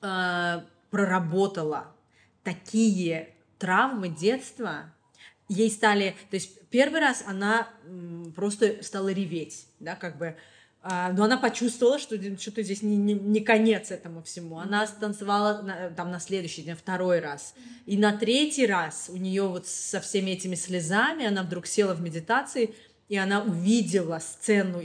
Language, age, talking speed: Russian, 20-39, 140 wpm